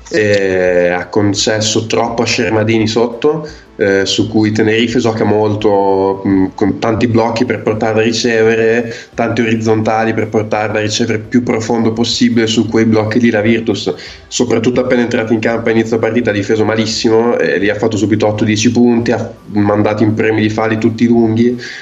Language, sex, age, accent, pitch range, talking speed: Italian, male, 20-39, native, 110-120 Hz, 175 wpm